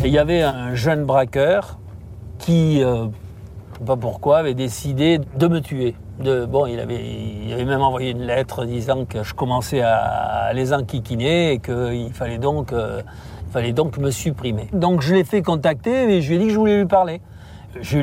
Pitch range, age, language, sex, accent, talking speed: 105-140 Hz, 60-79, French, male, French, 195 wpm